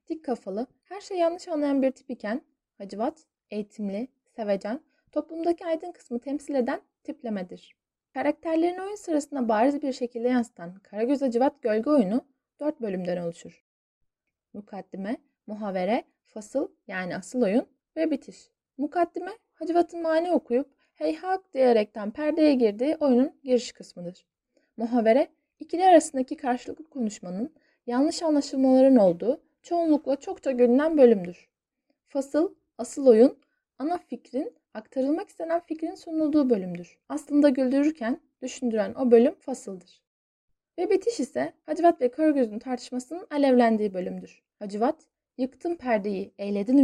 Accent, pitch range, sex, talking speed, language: native, 225-305 Hz, female, 120 wpm, Turkish